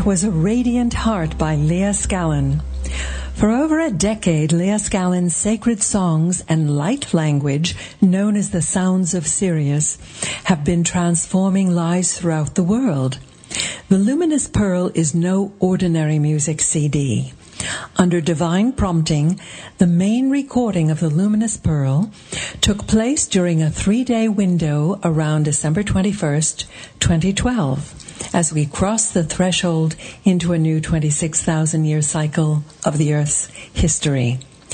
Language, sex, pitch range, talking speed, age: English, female, 155-195 Hz, 130 wpm, 60-79